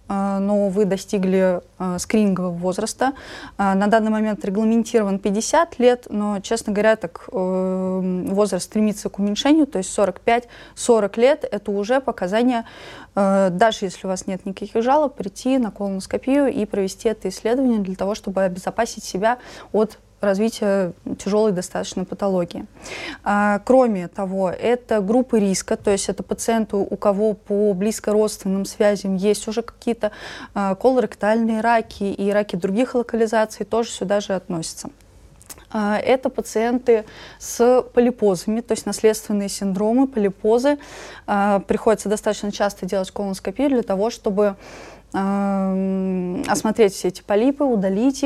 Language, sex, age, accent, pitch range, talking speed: Russian, female, 20-39, native, 195-230 Hz, 135 wpm